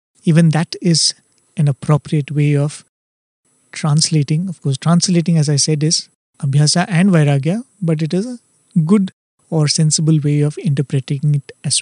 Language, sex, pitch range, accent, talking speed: English, male, 145-180 Hz, Indian, 150 wpm